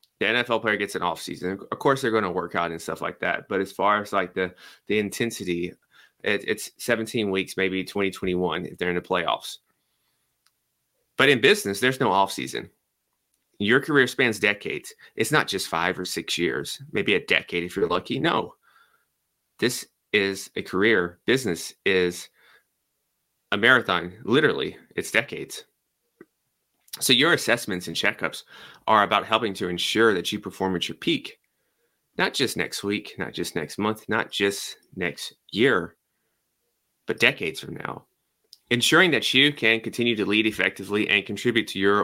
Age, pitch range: 30-49, 90-110 Hz